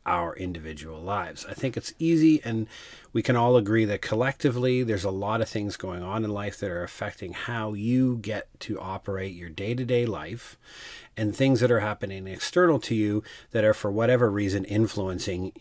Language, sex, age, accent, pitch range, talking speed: English, male, 40-59, American, 95-115 Hz, 185 wpm